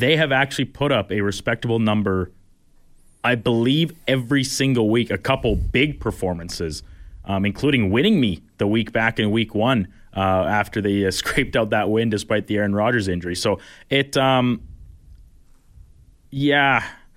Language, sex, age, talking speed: English, male, 30-49, 155 wpm